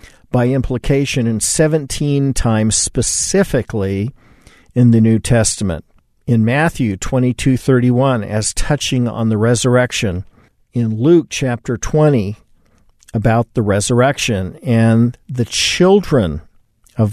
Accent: American